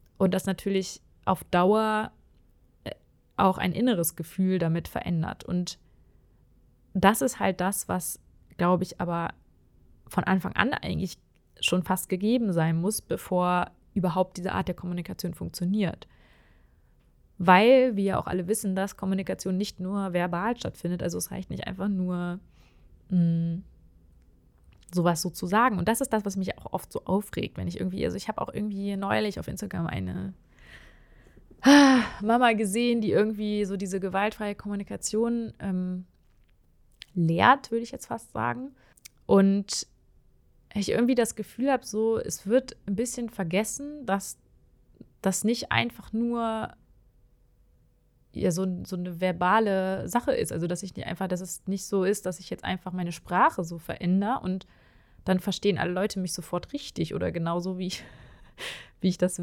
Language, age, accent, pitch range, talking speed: German, 20-39, German, 175-210 Hz, 150 wpm